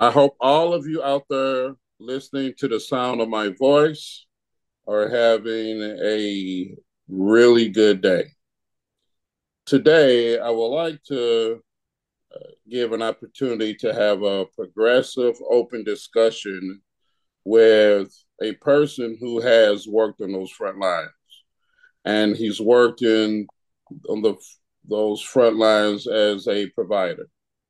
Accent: American